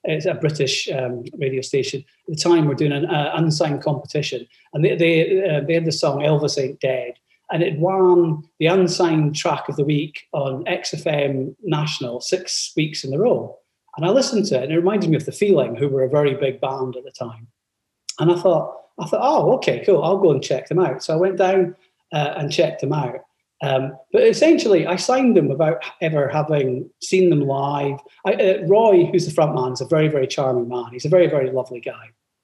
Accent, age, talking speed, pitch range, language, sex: British, 40-59, 215 wpm, 140-175 Hz, English, male